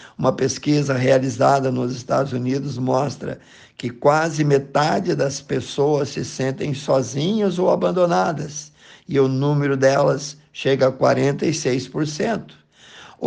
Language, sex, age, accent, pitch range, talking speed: Portuguese, male, 50-69, Brazilian, 130-150 Hz, 110 wpm